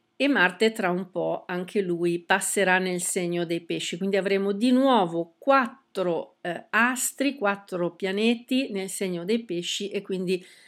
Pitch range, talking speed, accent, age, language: 180-220 Hz, 150 wpm, native, 50-69, Italian